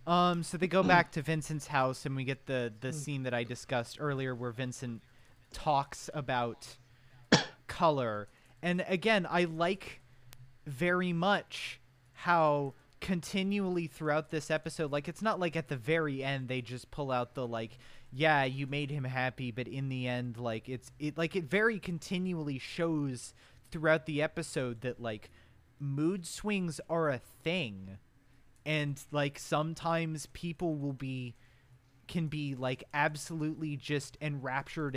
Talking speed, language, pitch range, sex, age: 150 wpm, English, 125-165 Hz, male, 30-49